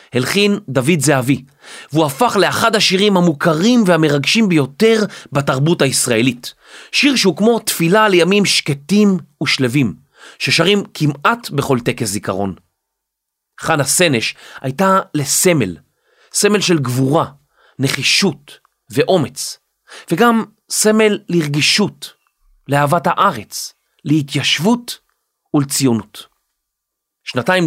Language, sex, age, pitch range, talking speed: Hebrew, male, 30-49, 135-190 Hz, 90 wpm